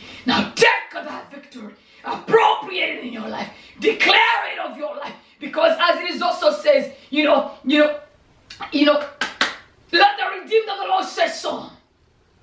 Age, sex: 30-49, female